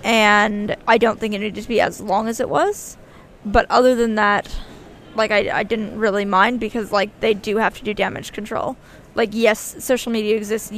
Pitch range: 210-240 Hz